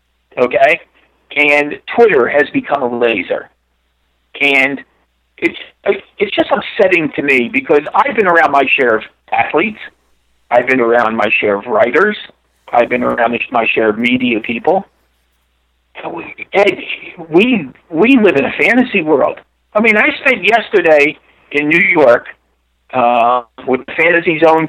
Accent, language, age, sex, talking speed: American, English, 50-69, male, 145 wpm